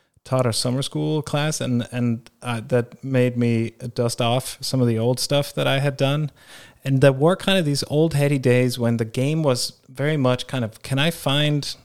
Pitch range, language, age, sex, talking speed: 110-135 Hz, English, 30-49, male, 215 wpm